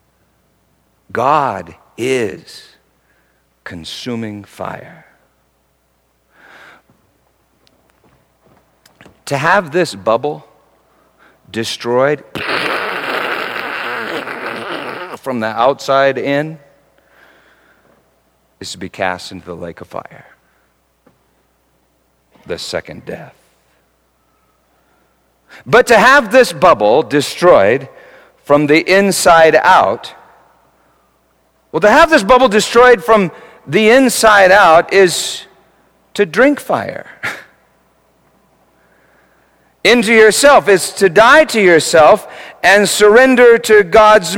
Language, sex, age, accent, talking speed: English, male, 50-69, American, 80 wpm